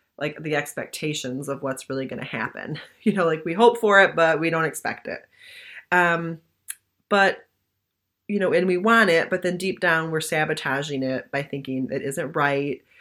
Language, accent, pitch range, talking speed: English, American, 150-210 Hz, 190 wpm